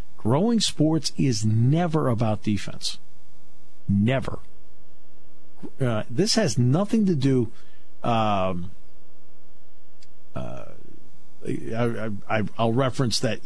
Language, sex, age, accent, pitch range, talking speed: English, male, 50-69, American, 90-130 Hz, 90 wpm